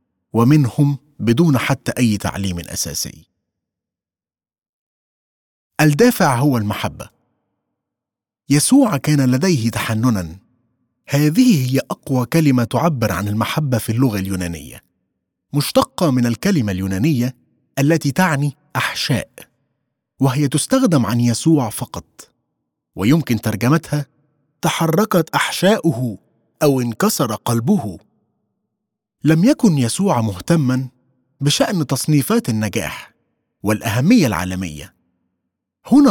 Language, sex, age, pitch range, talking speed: Arabic, male, 30-49, 105-155 Hz, 85 wpm